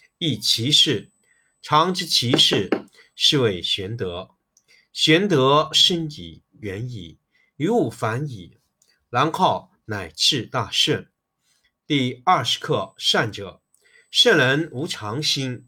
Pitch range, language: 115-155 Hz, Chinese